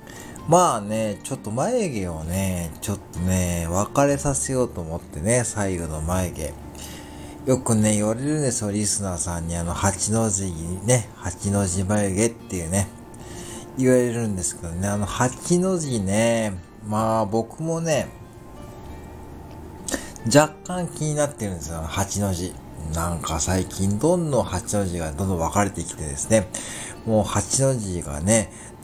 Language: Japanese